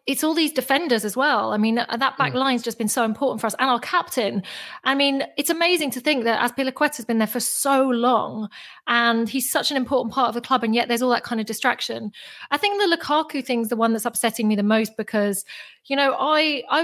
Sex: female